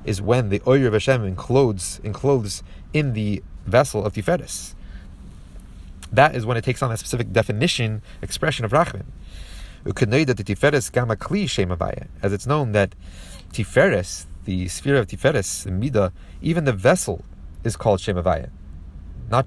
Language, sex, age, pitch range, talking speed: English, male, 30-49, 85-120 Hz, 145 wpm